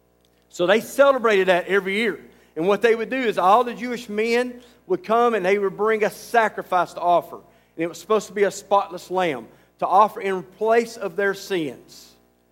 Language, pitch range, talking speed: English, 165-225 Hz, 200 wpm